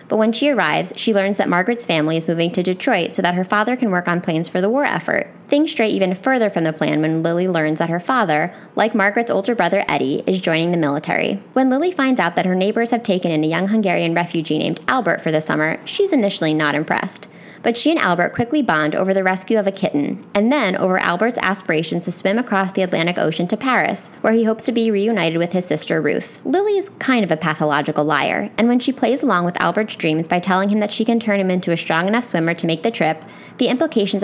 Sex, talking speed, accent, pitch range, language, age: female, 245 wpm, American, 170-235 Hz, English, 20-39